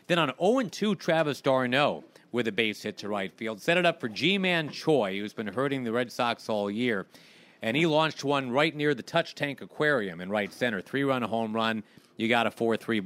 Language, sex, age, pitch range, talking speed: English, male, 40-59, 110-145 Hz, 210 wpm